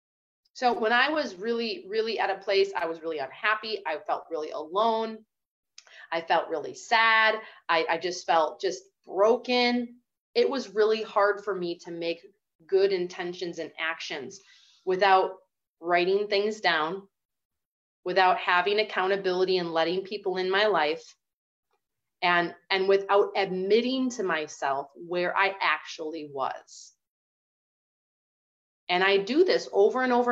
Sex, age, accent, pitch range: female, 30-49, American, 185-255 Hz